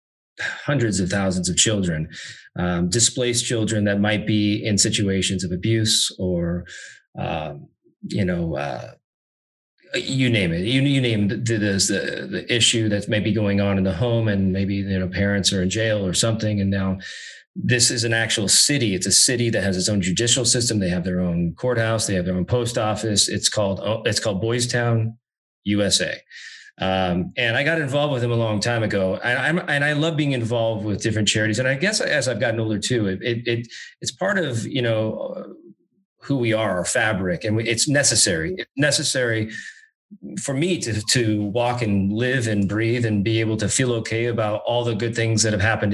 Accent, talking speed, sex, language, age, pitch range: American, 195 wpm, male, English, 30-49, 100-120 Hz